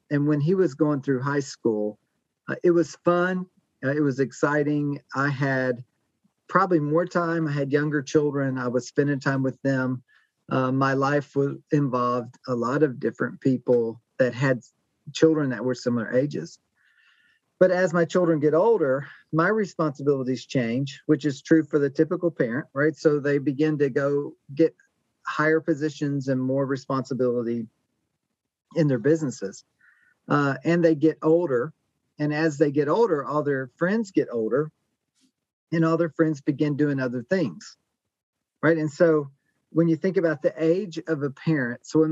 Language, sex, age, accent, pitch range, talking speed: English, male, 40-59, American, 130-160 Hz, 165 wpm